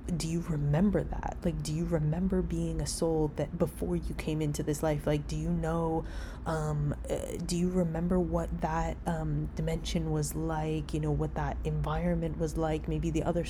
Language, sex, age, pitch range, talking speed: English, female, 20-39, 155-185 Hz, 190 wpm